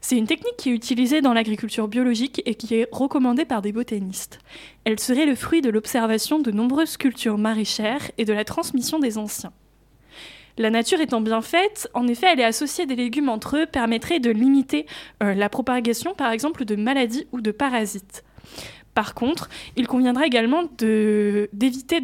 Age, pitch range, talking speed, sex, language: 20-39, 220-275 Hz, 180 wpm, female, French